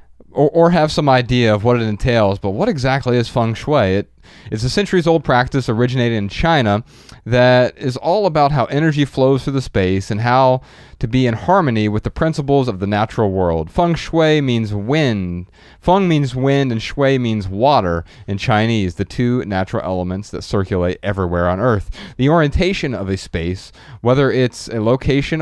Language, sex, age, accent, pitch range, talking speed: English, male, 30-49, American, 100-135 Hz, 185 wpm